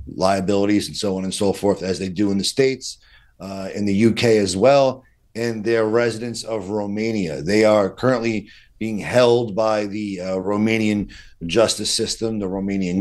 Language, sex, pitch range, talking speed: English, male, 100-115 Hz, 170 wpm